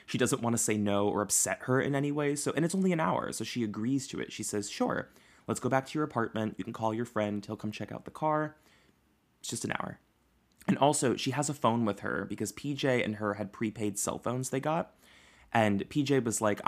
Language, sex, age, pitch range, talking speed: English, male, 20-39, 105-125 Hz, 250 wpm